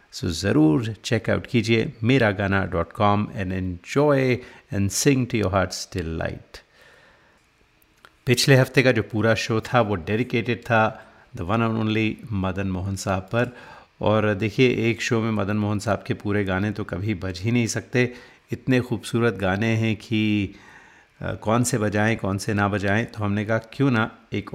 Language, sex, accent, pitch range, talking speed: Hindi, male, native, 100-115 Hz, 170 wpm